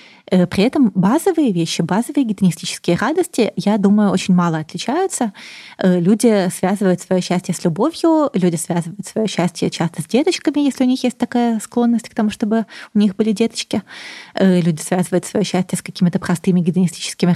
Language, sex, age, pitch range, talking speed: Russian, female, 20-39, 180-215 Hz, 160 wpm